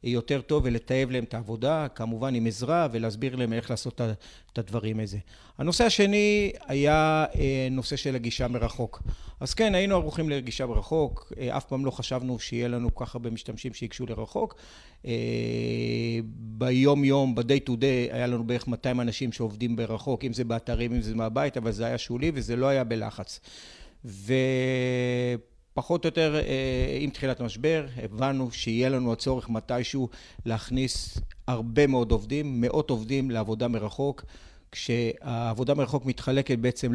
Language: Hebrew